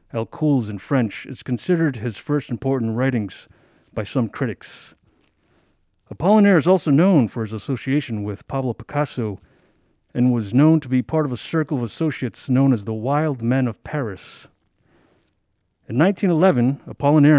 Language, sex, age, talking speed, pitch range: English, male, 40-59, 150 wpm, 115-150 Hz